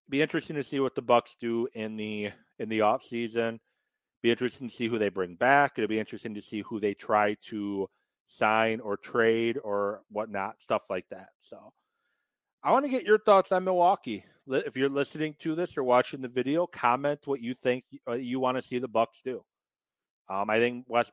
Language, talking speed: English, 200 wpm